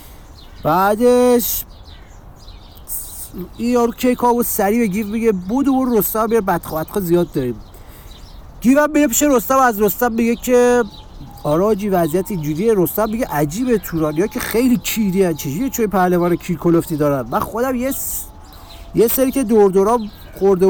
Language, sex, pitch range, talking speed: Persian, male, 170-235 Hz, 145 wpm